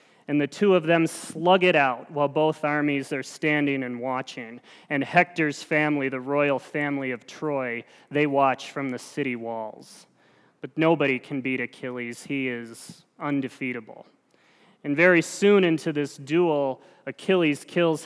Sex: male